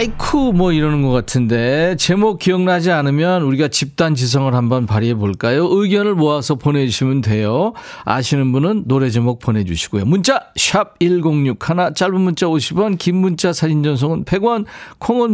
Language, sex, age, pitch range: Korean, male, 40-59, 115-180 Hz